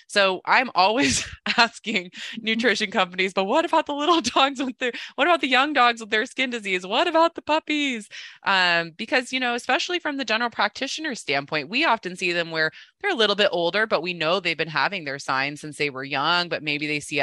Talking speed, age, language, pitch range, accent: 220 wpm, 20-39, English, 150-215 Hz, American